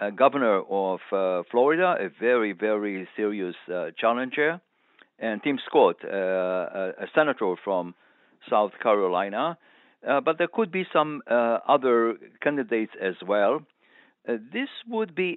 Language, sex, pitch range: English, male, 110-150 Hz